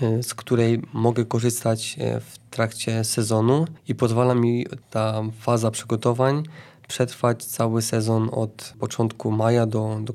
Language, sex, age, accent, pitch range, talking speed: Polish, male, 20-39, native, 115-130 Hz, 125 wpm